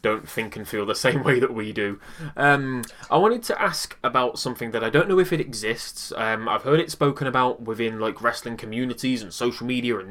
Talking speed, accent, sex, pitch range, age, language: 225 wpm, British, male, 110-140 Hz, 20-39, English